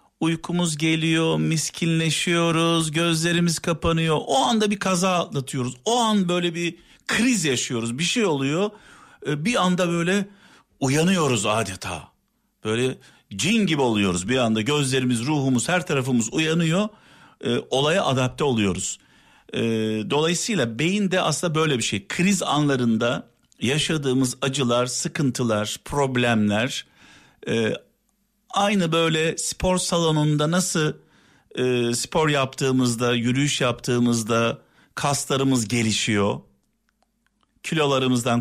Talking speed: 100 wpm